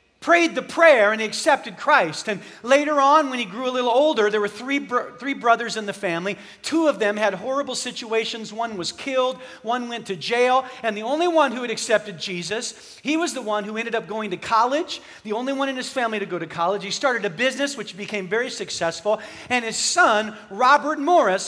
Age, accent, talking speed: 40-59, American, 220 wpm